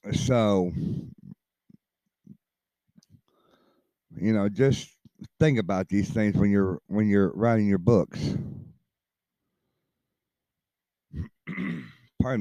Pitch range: 100-125 Hz